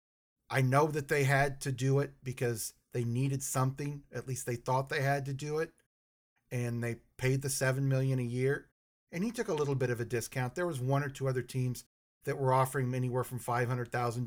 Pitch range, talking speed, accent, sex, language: 120-140 Hz, 215 wpm, American, male, English